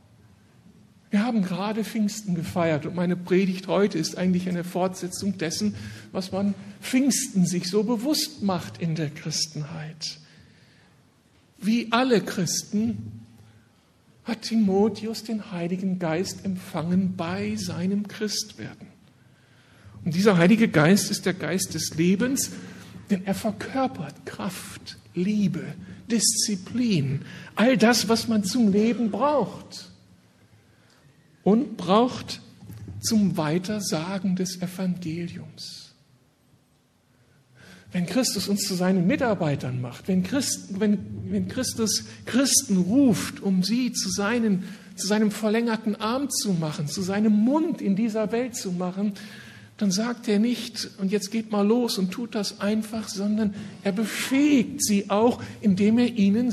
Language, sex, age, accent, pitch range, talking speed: German, male, 60-79, German, 180-225 Hz, 125 wpm